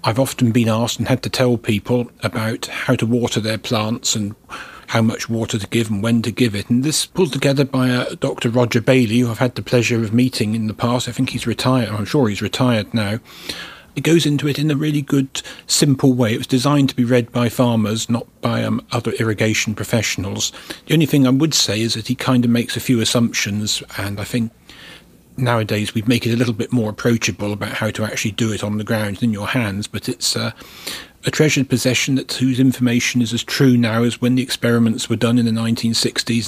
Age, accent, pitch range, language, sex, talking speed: 40-59, British, 110-125 Hz, English, male, 230 wpm